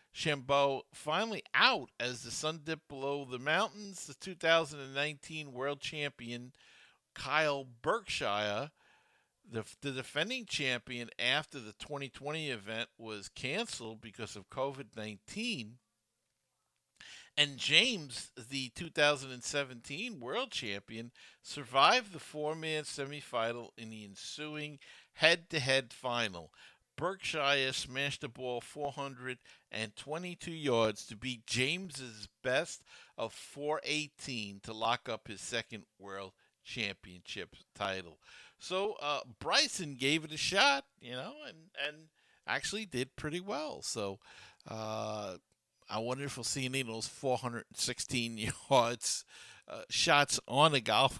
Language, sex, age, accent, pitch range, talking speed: English, male, 50-69, American, 115-150 Hz, 115 wpm